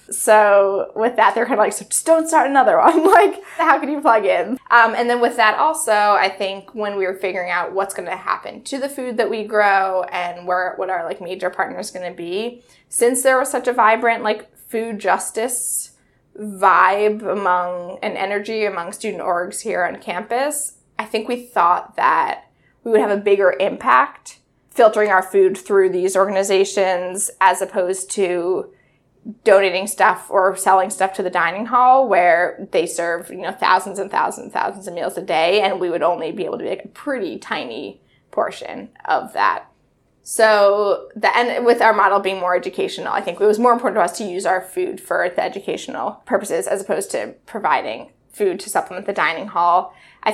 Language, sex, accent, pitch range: English, female, American, 190-240 Hz